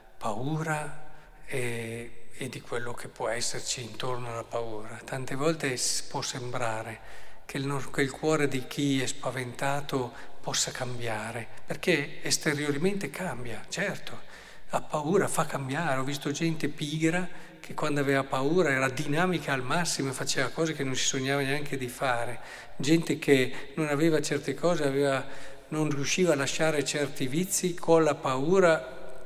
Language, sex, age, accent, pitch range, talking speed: Italian, male, 50-69, native, 125-155 Hz, 145 wpm